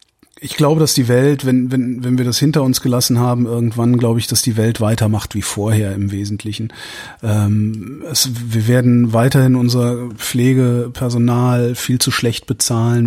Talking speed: 165 wpm